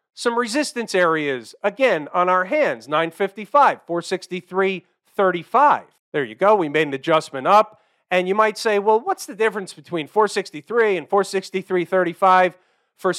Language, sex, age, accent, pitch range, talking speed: English, male, 40-59, American, 175-225 Hz, 140 wpm